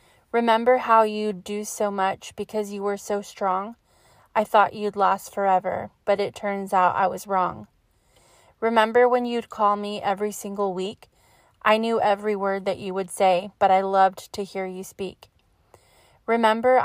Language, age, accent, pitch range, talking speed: English, 20-39, American, 190-215 Hz, 165 wpm